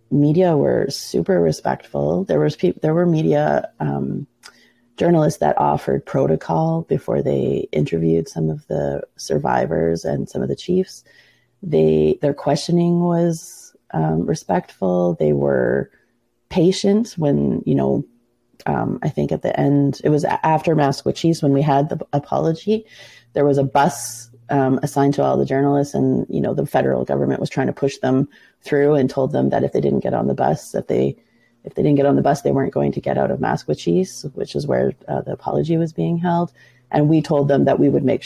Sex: female